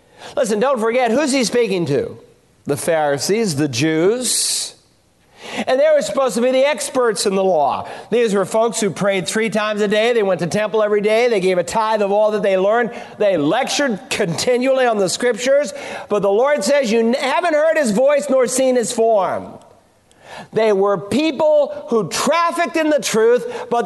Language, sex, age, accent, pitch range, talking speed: English, male, 50-69, American, 185-250 Hz, 185 wpm